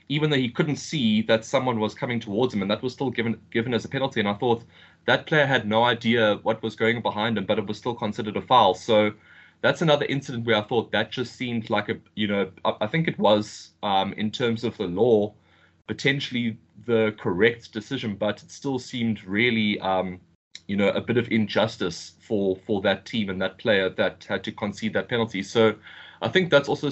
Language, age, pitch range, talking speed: English, 20-39, 100-115 Hz, 225 wpm